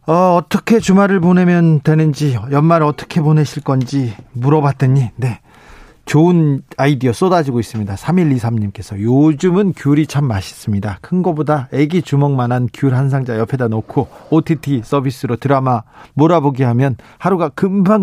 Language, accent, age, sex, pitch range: Korean, native, 40-59, male, 120-165 Hz